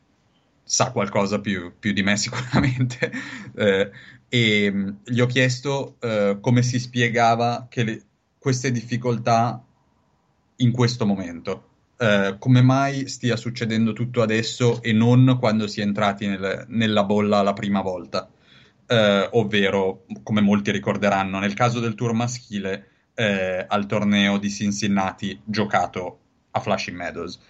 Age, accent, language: 30-49, native, Italian